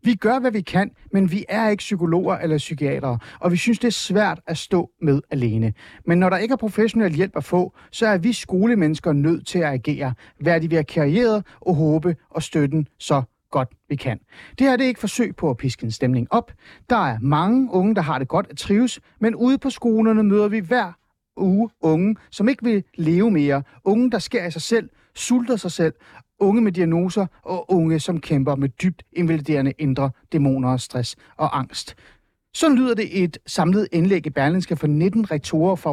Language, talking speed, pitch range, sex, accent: Danish, 210 wpm, 145-210 Hz, male, native